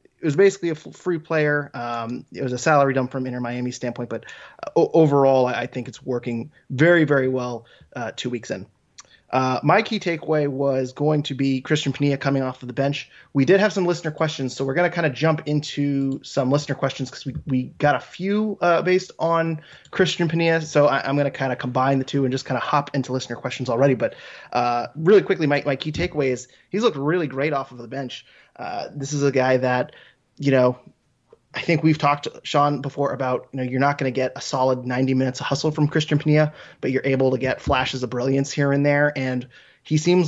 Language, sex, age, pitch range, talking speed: English, male, 20-39, 130-150 Hz, 230 wpm